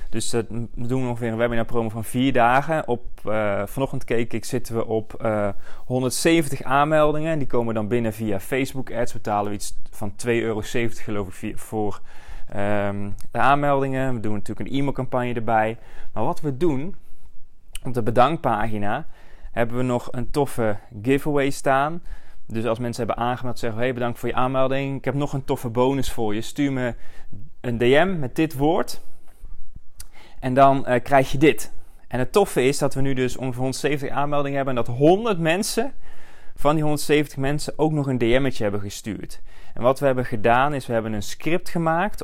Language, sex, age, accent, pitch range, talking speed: Dutch, male, 20-39, Dutch, 115-140 Hz, 185 wpm